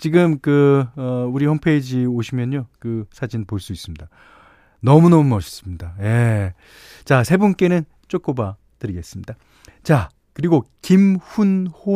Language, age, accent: Korean, 40-59, native